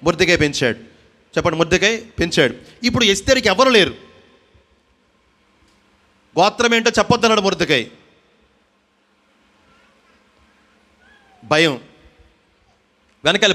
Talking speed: 65 wpm